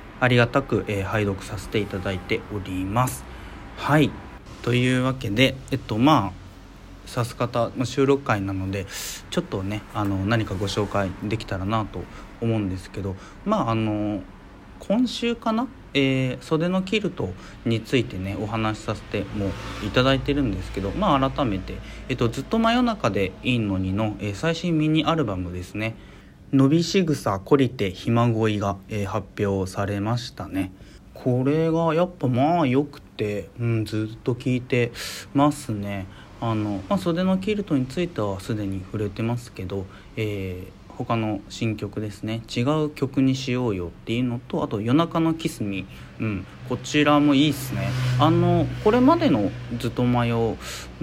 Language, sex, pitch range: Japanese, male, 100-135 Hz